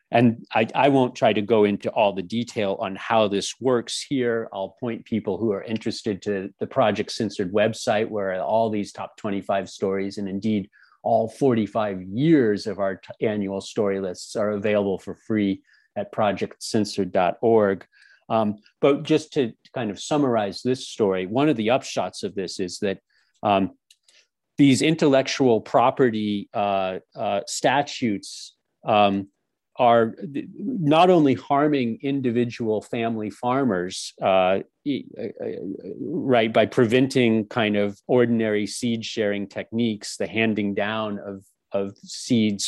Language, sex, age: English, male, 40-59